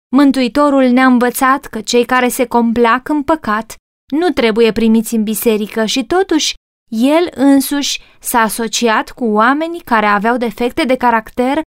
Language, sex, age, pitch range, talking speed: Romanian, female, 20-39, 235-305 Hz, 145 wpm